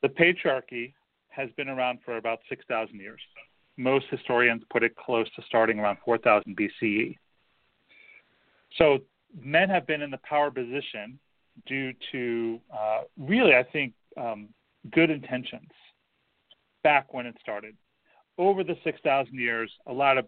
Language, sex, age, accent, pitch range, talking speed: English, male, 40-59, American, 120-155 Hz, 140 wpm